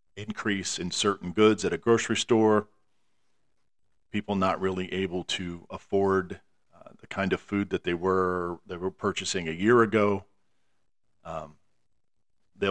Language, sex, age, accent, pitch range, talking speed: English, male, 40-59, American, 90-110 Hz, 140 wpm